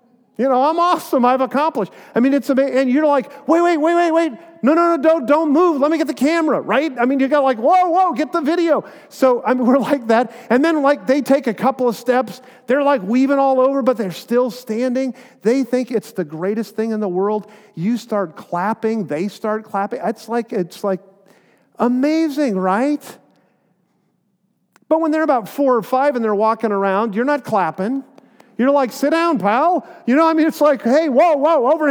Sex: male